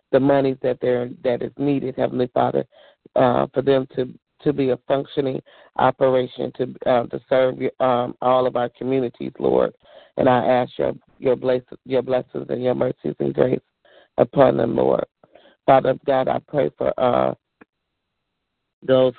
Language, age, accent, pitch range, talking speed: English, 40-59, American, 125-135 Hz, 160 wpm